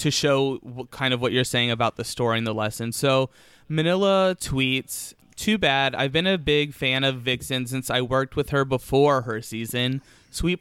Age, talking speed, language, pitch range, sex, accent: 20-39, 190 wpm, English, 120-140 Hz, male, American